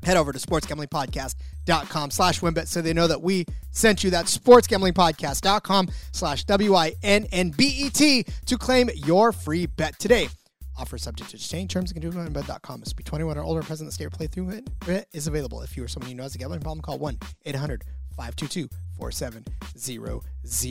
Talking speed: 175 wpm